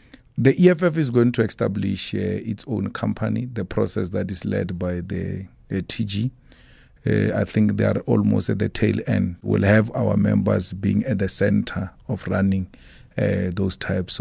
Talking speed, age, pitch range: 175 wpm, 40-59, 95-115 Hz